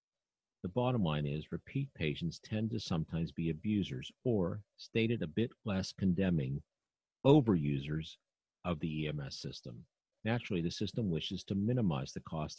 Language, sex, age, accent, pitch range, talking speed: English, male, 50-69, American, 80-110 Hz, 145 wpm